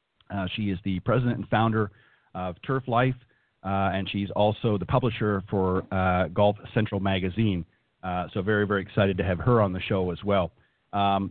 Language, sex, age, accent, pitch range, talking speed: English, male, 40-59, American, 100-120 Hz, 185 wpm